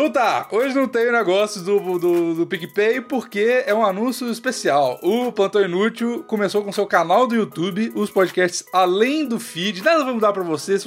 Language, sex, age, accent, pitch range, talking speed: Portuguese, male, 20-39, Brazilian, 150-210 Hz, 195 wpm